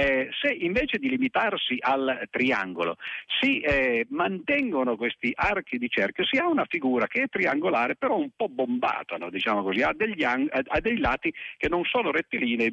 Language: Italian